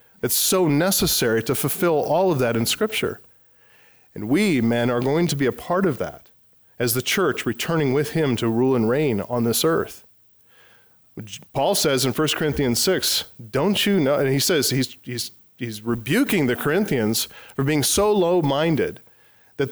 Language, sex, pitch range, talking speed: English, male, 120-160 Hz, 175 wpm